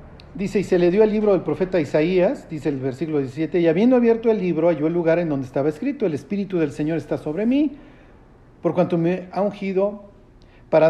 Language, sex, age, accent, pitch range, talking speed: Spanish, male, 50-69, Mexican, 140-195 Hz, 215 wpm